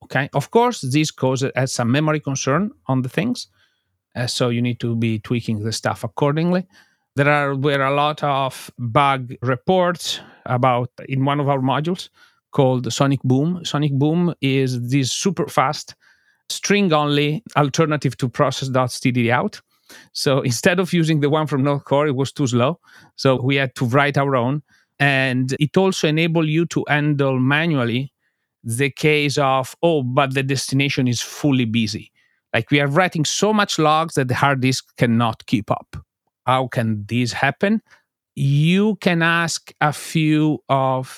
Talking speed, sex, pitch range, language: 165 wpm, male, 120-150 Hz, English